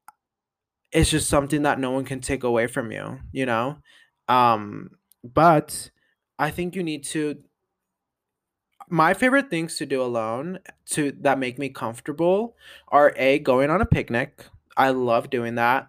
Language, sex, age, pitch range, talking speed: English, male, 20-39, 125-150 Hz, 155 wpm